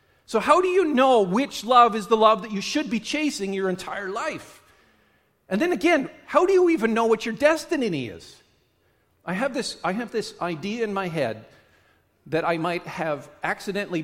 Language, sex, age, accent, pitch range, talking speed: English, male, 50-69, American, 150-250 Hz, 190 wpm